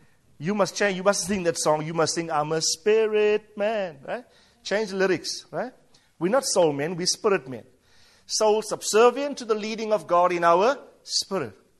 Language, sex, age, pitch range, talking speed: English, male, 50-69, 170-255 Hz, 190 wpm